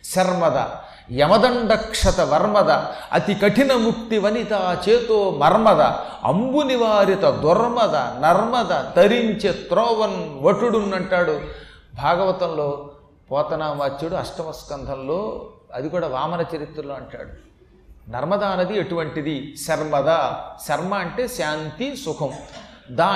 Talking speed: 90 wpm